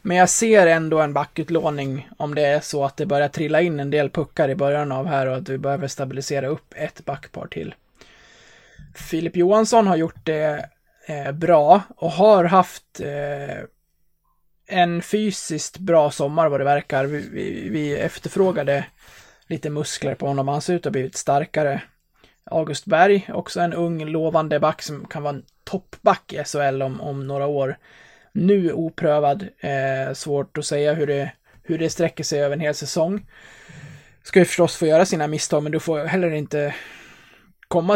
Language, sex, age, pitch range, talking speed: Swedish, male, 20-39, 145-175 Hz, 175 wpm